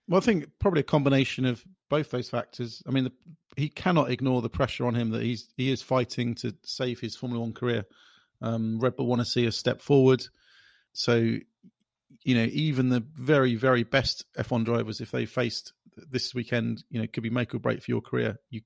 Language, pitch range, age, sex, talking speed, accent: English, 115-130 Hz, 40-59, male, 215 wpm, British